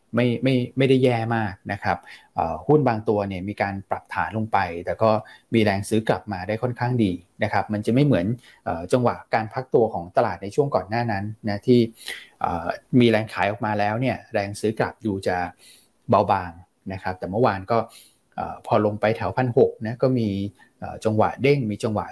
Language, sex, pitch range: Thai, male, 100-125 Hz